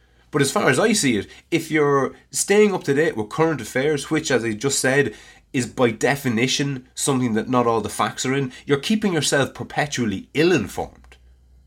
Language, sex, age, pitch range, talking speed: English, male, 20-39, 100-135 Hz, 190 wpm